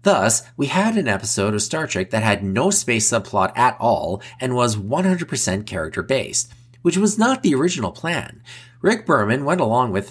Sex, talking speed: male, 180 wpm